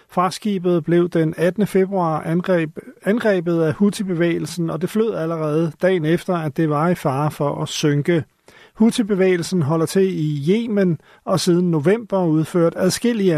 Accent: native